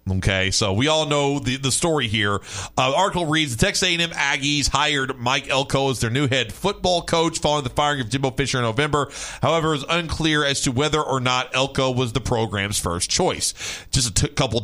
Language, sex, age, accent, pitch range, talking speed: English, male, 40-59, American, 130-170 Hz, 215 wpm